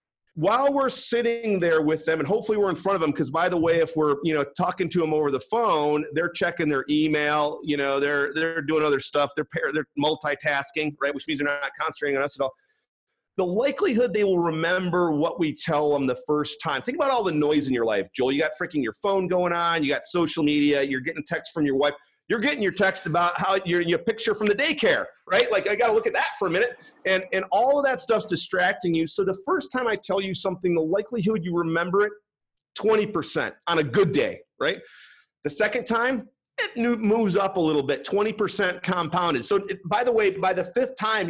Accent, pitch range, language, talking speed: American, 150-210 Hz, English, 230 wpm